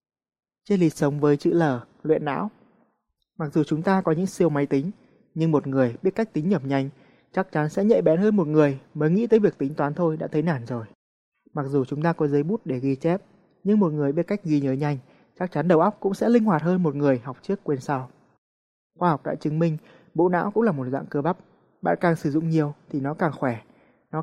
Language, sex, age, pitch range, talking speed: Vietnamese, male, 20-39, 140-185 Hz, 250 wpm